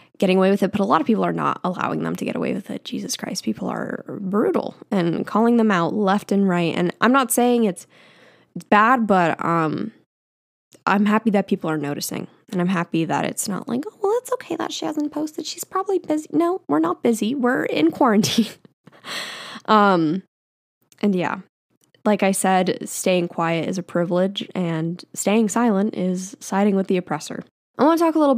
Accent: American